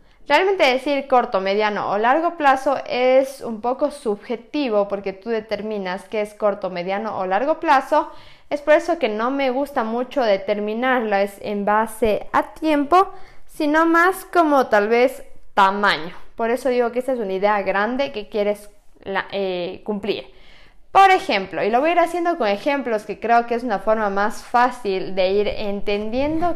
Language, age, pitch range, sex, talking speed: Spanish, 20-39, 205-290 Hz, female, 165 wpm